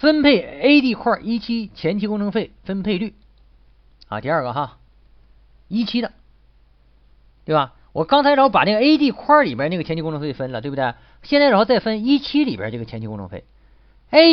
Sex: male